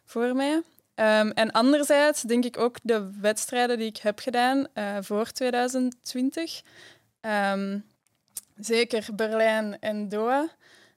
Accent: Dutch